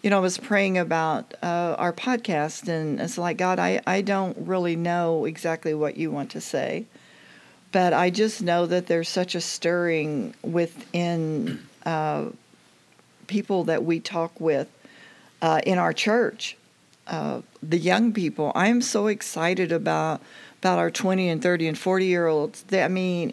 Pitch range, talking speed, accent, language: 165-205 Hz, 155 wpm, American, English